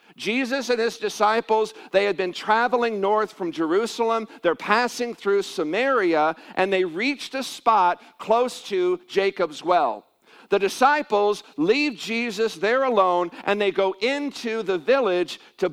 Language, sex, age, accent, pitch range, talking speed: English, male, 50-69, American, 185-235 Hz, 140 wpm